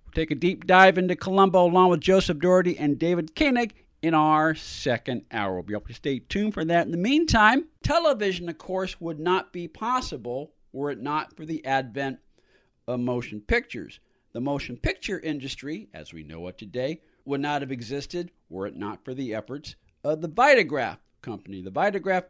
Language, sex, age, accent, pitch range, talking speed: English, male, 50-69, American, 135-190 Hz, 185 wpm